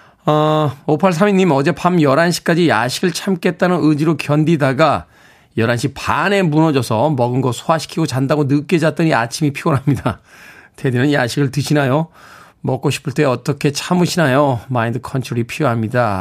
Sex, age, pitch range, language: male, 40-59, 120-160 Hz, Korean